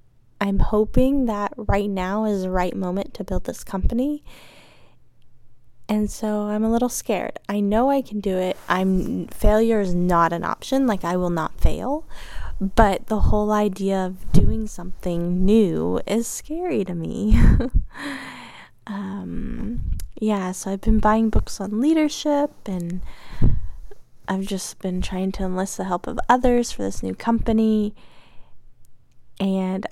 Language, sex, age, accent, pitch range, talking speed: English, female, 20-39, American, 185-225 Hz, 145 wpm